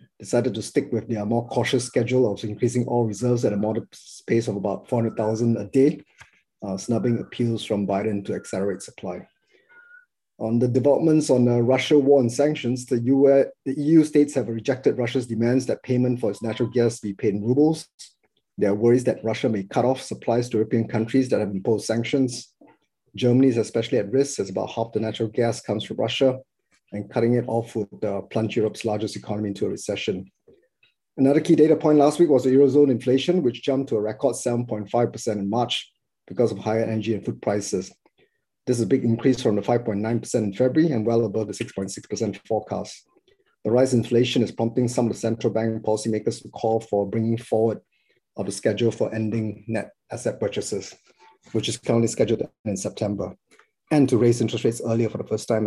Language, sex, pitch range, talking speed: English, male, 110-130 Hz, 195 wpm